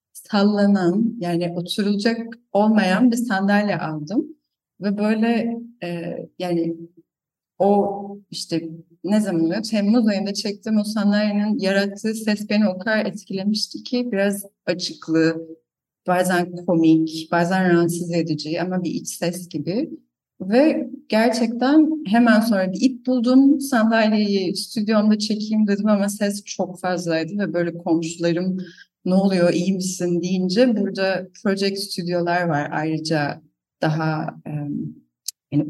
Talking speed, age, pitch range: 120 wpm, 30-49, 175-225 Hz